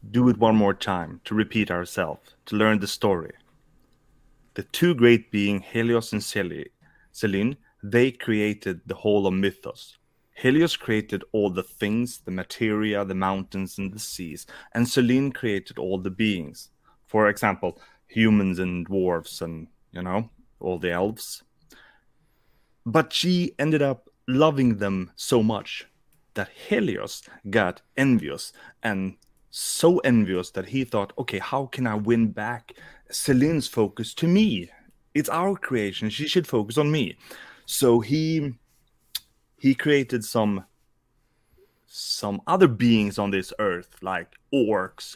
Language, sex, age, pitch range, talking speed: English, male, 30-49, 95-125 Hz, 135 wpm